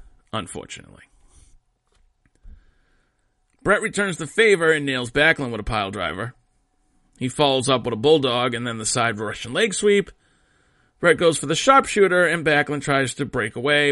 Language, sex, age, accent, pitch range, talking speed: English, male, 40-59, American, 120-200 Hz, 155 wpm